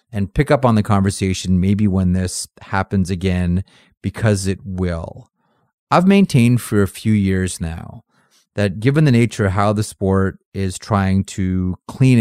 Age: 30-49